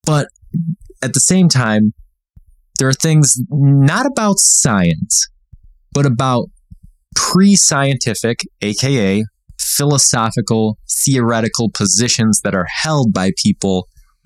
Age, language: 20-39, English